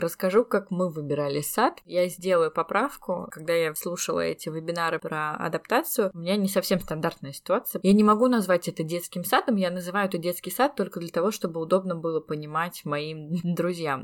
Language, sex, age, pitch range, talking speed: Russian, female, 20-39, 160-195 Hz, 180 wpm